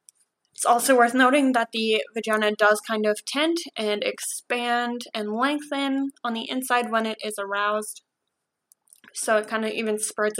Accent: American